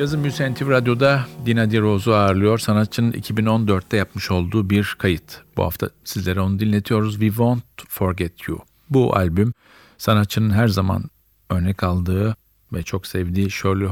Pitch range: 95-110 Hz